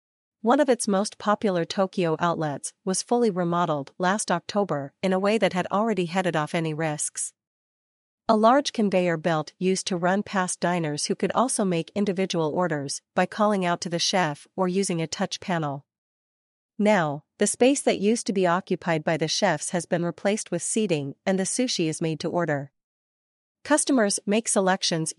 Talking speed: 175 wpm